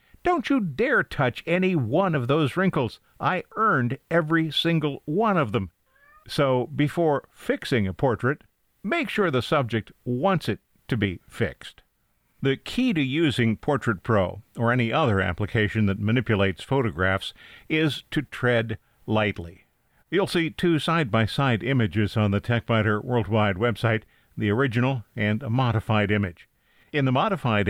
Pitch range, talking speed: 110-150 Hz, 145 wpm